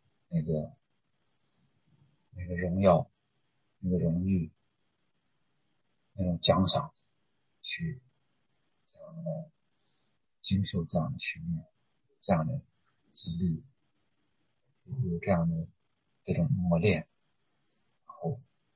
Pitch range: 90-115 Hz